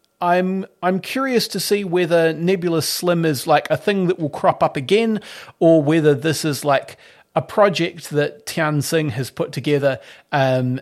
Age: 30-49